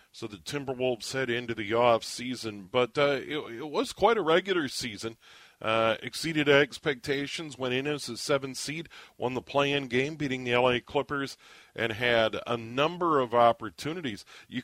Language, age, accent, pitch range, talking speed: English, 40-59, American, 110-140 Hz, 170 wpm